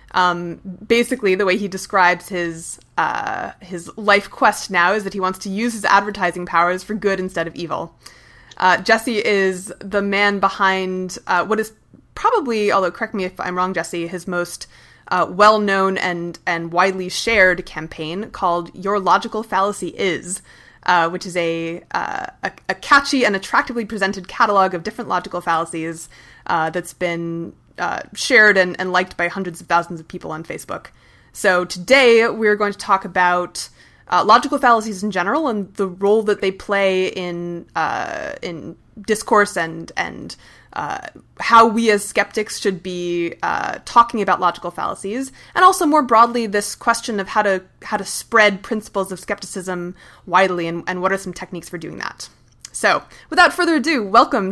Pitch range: 175-215 Hz